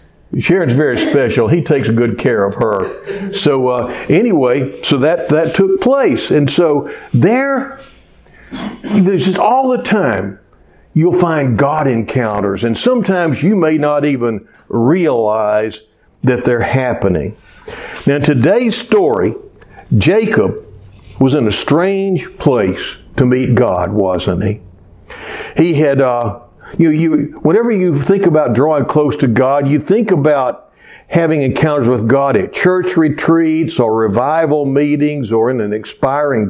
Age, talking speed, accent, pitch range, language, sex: 60-79, 135 wpm, American, 115-170 Hz, English, male